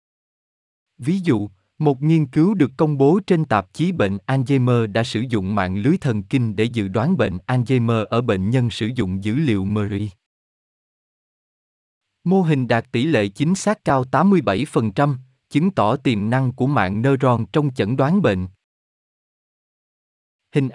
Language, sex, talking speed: Vietnamese, male, 155 wpm